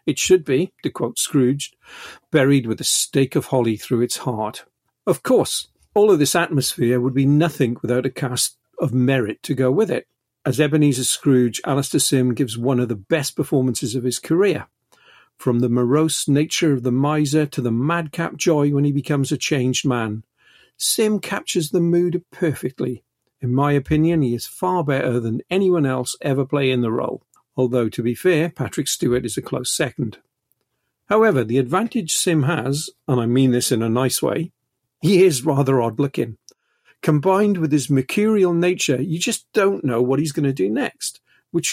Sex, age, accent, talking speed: male, 50-69, British, 185 wpm